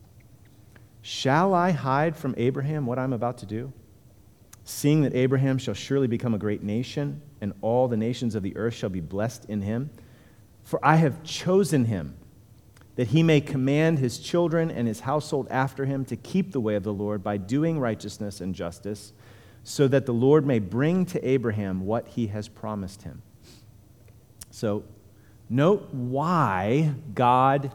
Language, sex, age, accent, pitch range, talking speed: English, male, 40-59, American, 105-135 Hz, 165 wpm